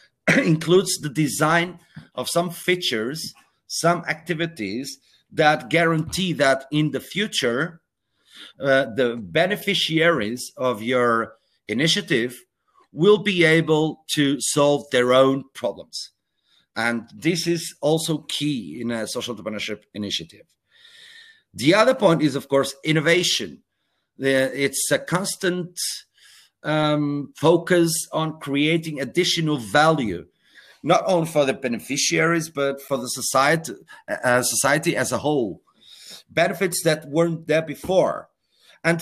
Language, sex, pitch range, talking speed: English, male, 130-170 Hz, 115 wpm